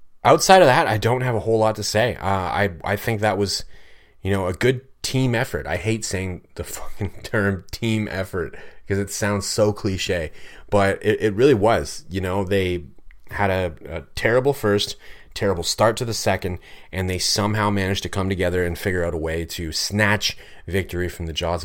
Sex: male